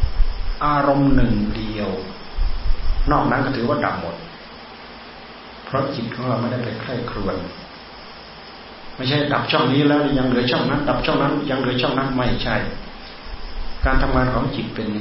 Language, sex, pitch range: Thai, male, 105-130 Hz